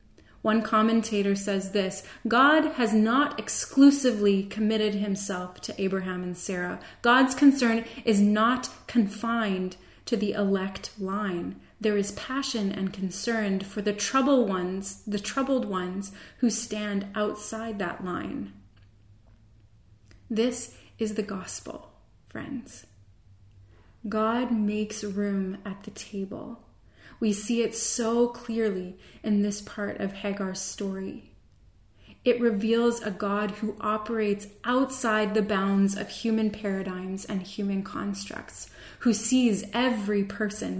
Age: 30-49